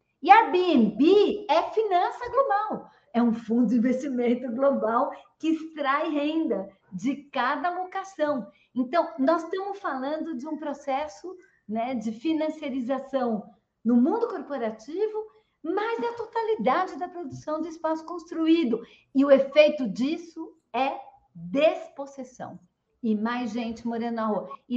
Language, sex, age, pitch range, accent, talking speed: Portuguese, female, 50-69, 220-310 Hz, Brazilian, 125 wpm